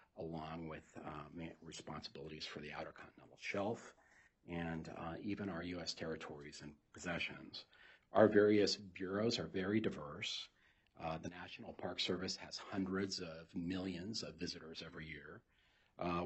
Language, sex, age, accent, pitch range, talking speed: English, male, 40-59, American, 80-100 Hz, 135 wpm